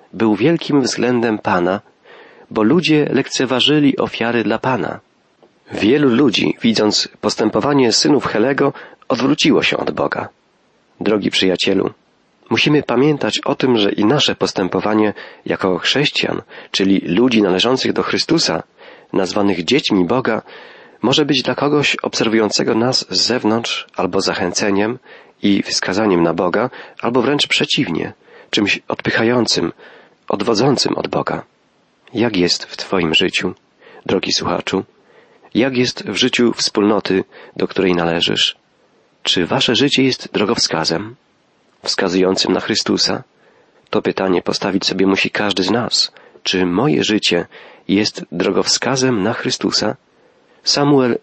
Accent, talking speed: native, 120 wpm